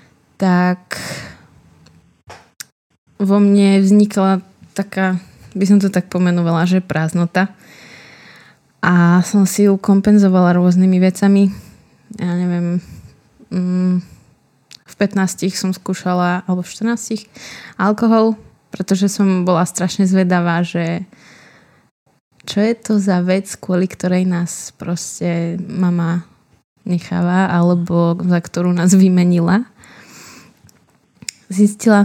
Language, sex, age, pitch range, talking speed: Slovak, female, 20-39, 180-200 Hz, 95 wpm